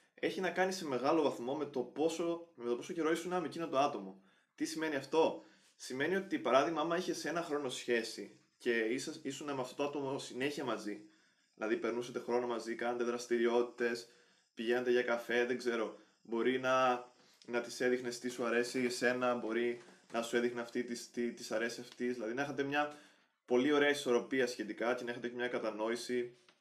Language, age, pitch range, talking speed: Greek, 20-39, 120-140 Hz, 185 wpm